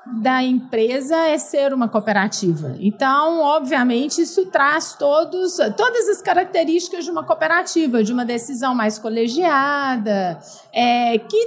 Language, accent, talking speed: Portuguese, Brazilian, 115 wpm